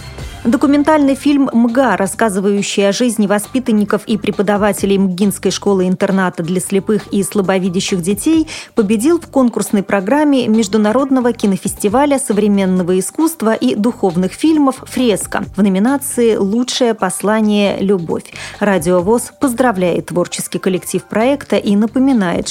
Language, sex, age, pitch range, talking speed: Russian, female, 30-49, 185-240 Hz, 110 wpm